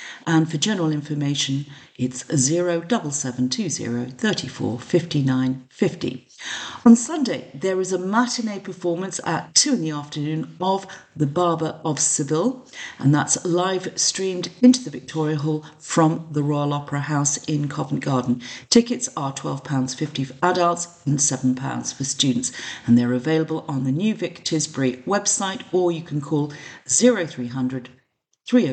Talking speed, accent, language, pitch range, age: 140 wpm, British, English, 135-170 Hz, 50-69